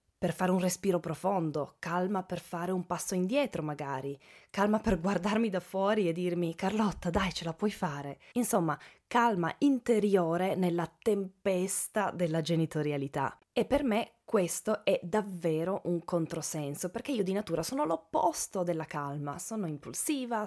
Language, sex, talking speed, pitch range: Italian, female, 145 wpm, 160-210 Hz